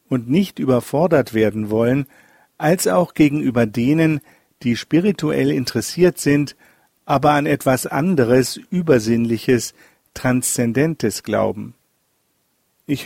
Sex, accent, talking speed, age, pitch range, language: male, German, 95 wpm, 50-69, 120-160 Hz, German